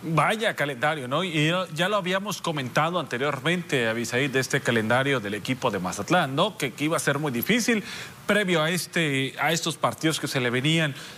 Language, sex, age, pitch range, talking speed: Spanish, male, 40-59, 145-180 Hz, 175 wpm